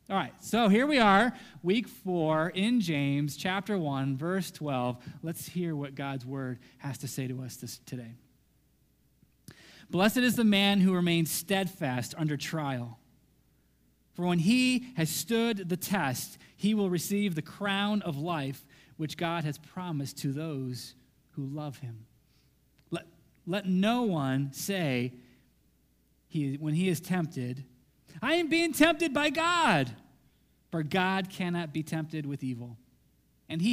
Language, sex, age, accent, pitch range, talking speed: English, male, 30-49, American, 135-185 Hz, 145 wpm